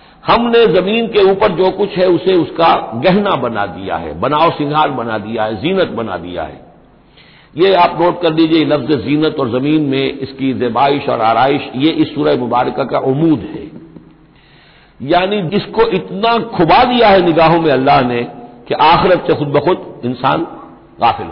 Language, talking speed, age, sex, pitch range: Hindi, 170 wpm, 60-79, male, 130-170 Hz